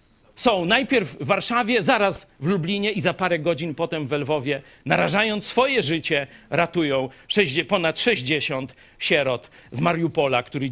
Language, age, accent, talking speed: Polish, 40-59, native, 135 wpm